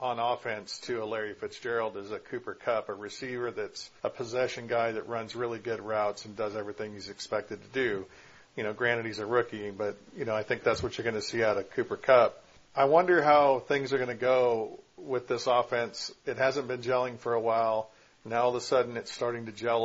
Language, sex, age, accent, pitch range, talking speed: English, male, 50-69, American, 115-130 Hz, 230 wpm